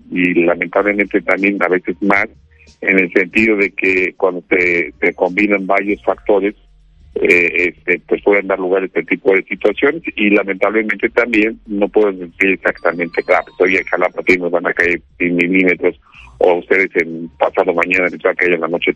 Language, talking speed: Spanish, 190 wpm